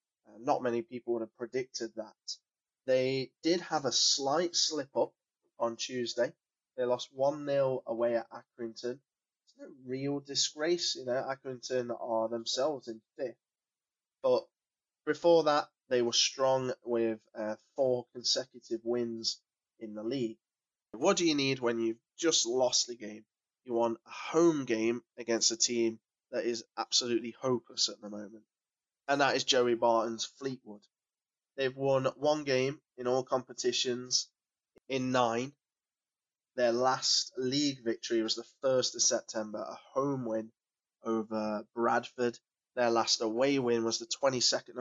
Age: 20-39